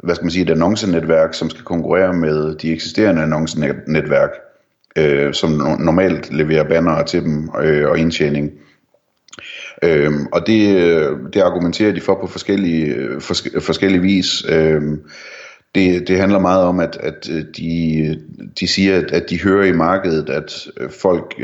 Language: Danish